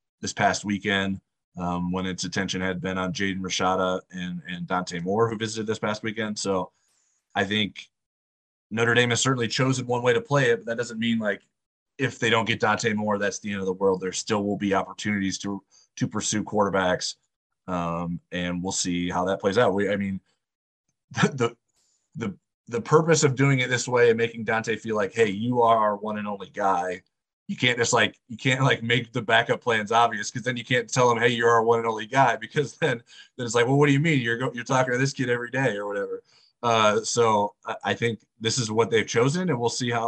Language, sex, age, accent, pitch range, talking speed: English, male, 30-49, American, 95-120 Hz, 230 wpm